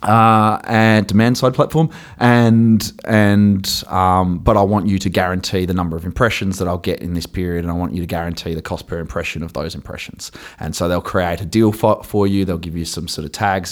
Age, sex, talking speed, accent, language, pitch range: 20-39, male, 230 wpm, Australian, English, 85-100 Hz